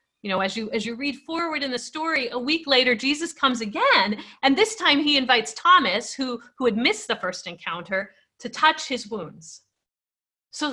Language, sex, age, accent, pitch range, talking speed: English, female, 30-49, American, 210-285 Hz, 195 wpm